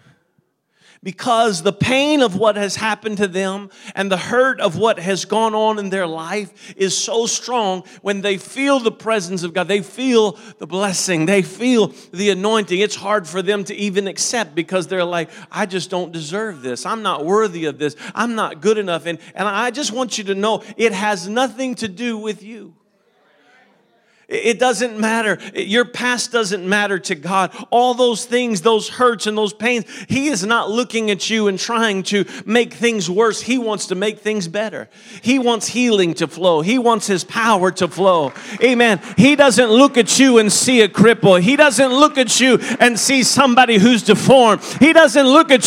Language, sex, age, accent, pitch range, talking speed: English, male, 40-59, American, 200-250 Hz, 195 wpm